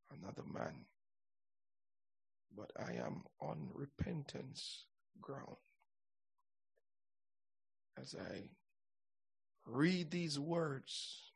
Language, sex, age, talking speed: English, male, 60-79, 70 wpm